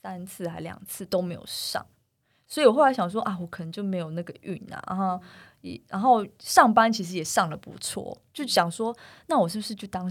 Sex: female